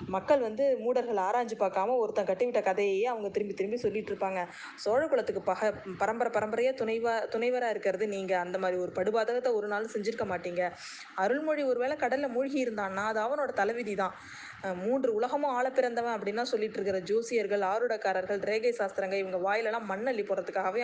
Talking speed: 145 wpm